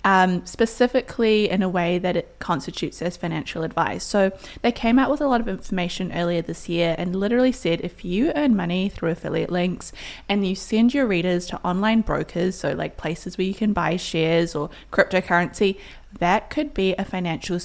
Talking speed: 190 wpm